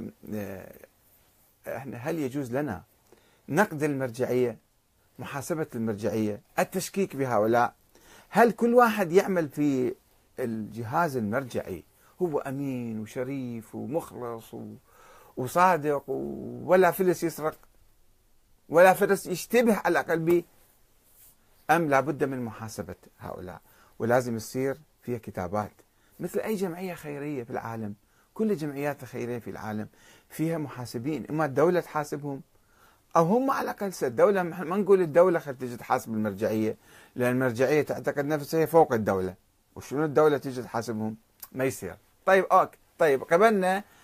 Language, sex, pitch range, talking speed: Arabic, male, 115-185 Hz, 110 wpm